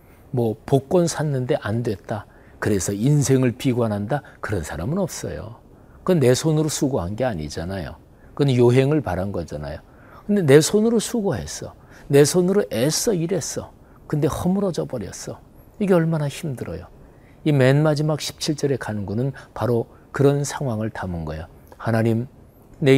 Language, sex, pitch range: Korean, male, 105-150 Hz